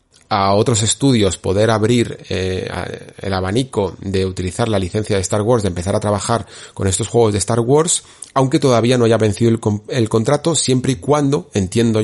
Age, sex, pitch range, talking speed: 30-49, male, 100-125 Hz, 185 wpm